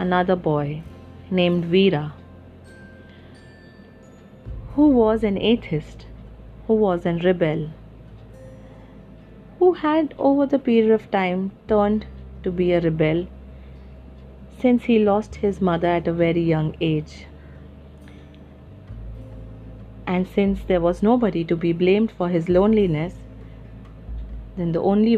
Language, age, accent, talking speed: English, 30-49, Indian, 115 wpm